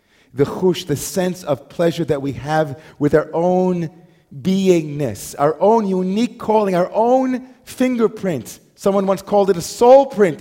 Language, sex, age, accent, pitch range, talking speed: English, male, 40-59, American, 120-180 Hz, 155 wpm